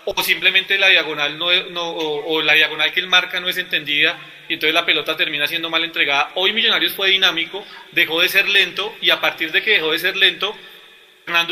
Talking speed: 220 wpm